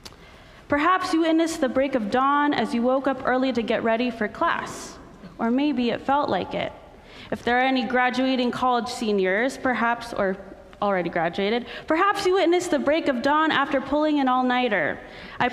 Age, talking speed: 20-39, 180 wpm